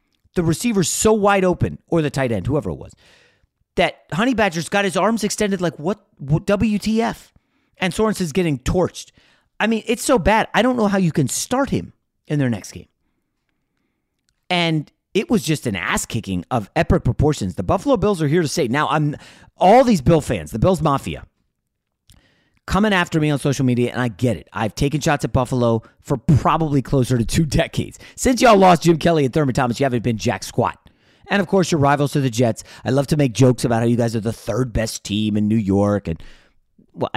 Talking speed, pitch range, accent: 215 wpm, 120-180 Hz, American